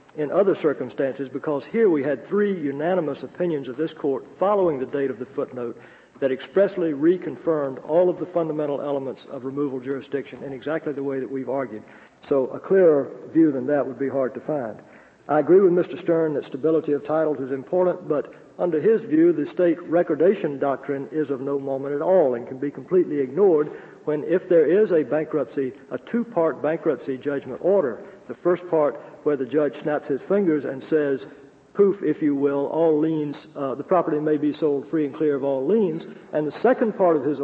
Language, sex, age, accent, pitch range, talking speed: English, male, 60-79, American, 140-175 Hz, 200 wpm